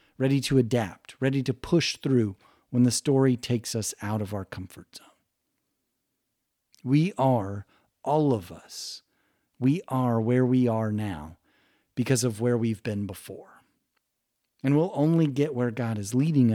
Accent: American